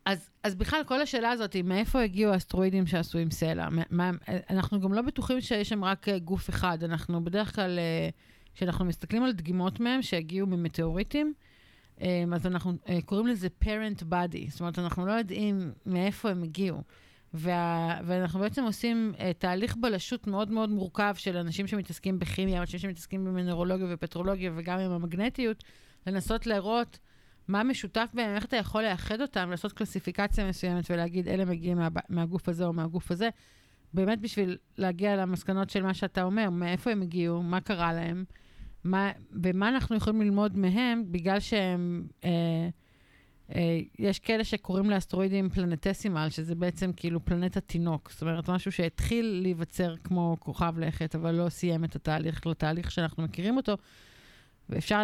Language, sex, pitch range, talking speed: Hebrew, female, 170-205 Hz, 160 wpm